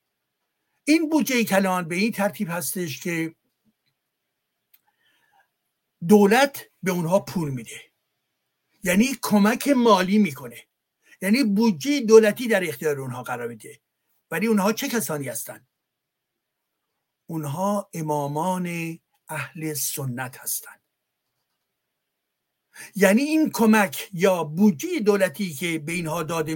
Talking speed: 105 wpm